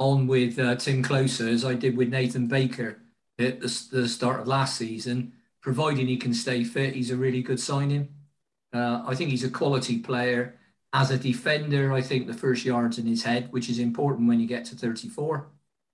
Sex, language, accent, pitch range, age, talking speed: male, English, British, 120-135 Hz, 40-59, 205 wpm